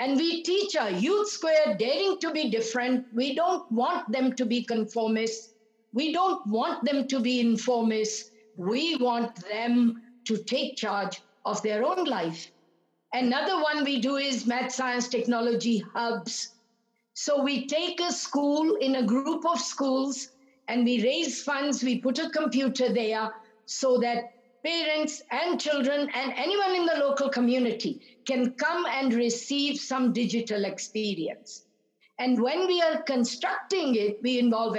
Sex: female